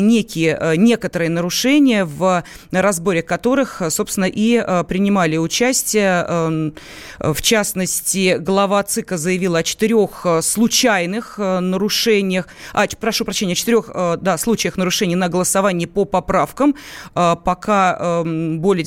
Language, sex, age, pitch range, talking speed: Russian, female, 30-49, 170-215 Hz, 95 wpm